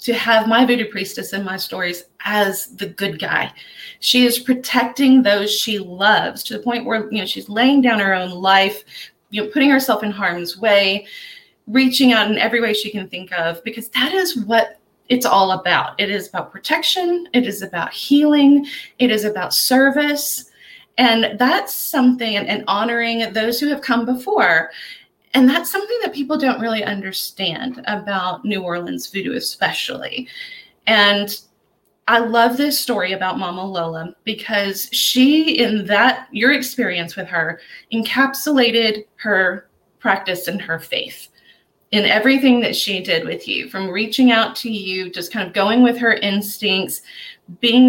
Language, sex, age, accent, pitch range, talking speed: English, female, 30-49, American, 195-250 Hz, 165 wpm